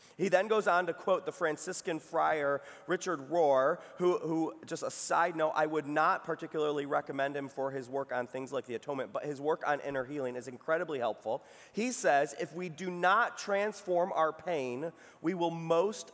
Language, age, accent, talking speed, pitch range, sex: English, 30-49, American, 195 wpm, 140-175 Hz, male